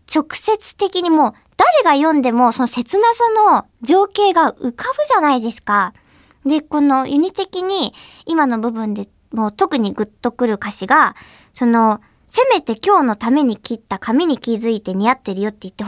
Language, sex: Japanese, male